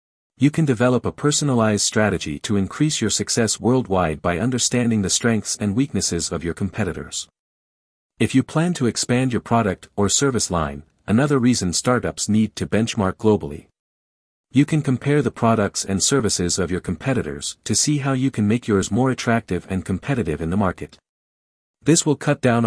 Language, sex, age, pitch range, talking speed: English, male, 50-69, 85-125 Hz, 170 wpm